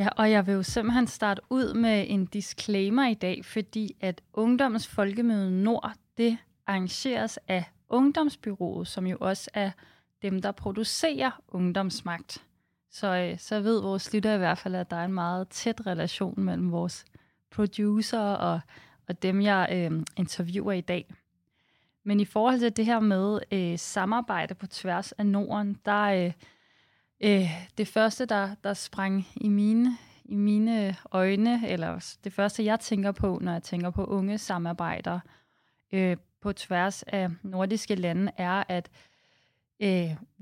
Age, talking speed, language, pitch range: 30-49, 155 wpm, Danish, 180-215 Hz